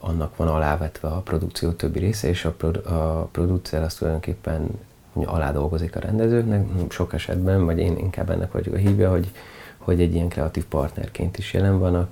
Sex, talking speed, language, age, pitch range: male, 190 wpm, Hungarian, 30-49, 85-100 Hz